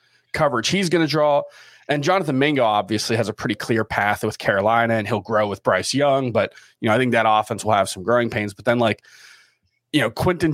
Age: 20-39